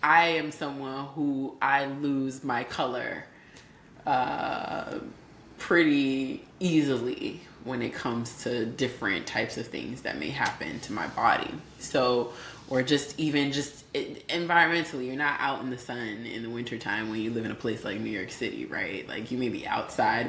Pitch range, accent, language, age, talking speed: 140-205 Hz, American, English, 20-39, 165 wpm